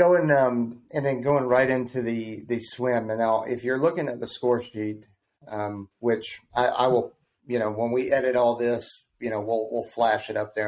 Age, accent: 30-49, American